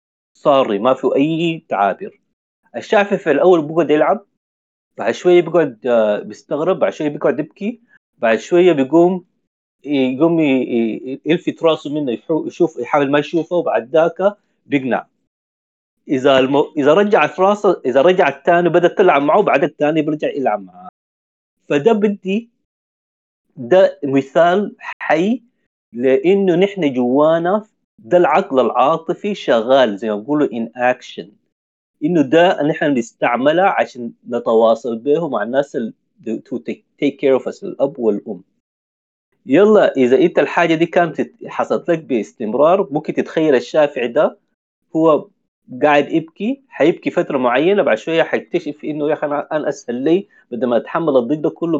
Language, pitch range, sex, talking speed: Arabic, 130-175 Hz, male, 135 wpm